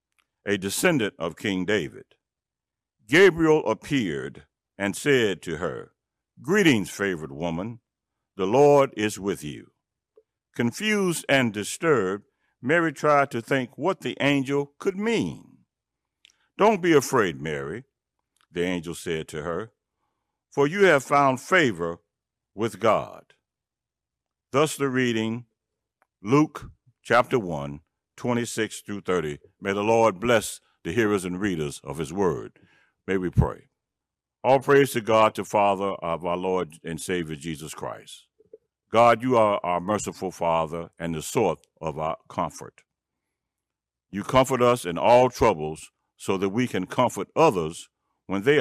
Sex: male